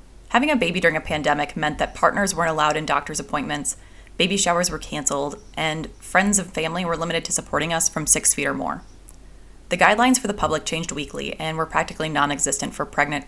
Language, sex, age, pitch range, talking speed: English, female, 20-39, 145-200 Hz, 205 wpm